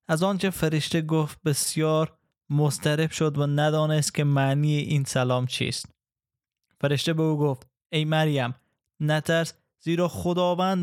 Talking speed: 125 wpm